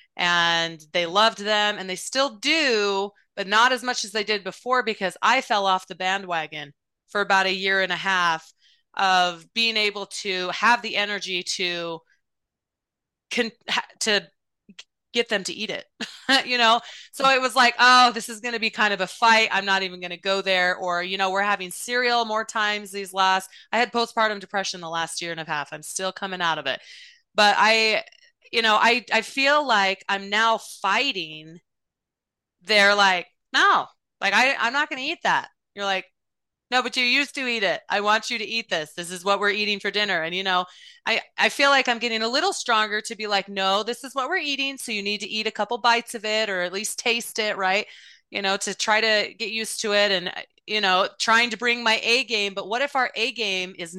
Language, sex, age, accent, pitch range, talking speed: English, female, 30-49, American, 190-235 Hz, 220 wpm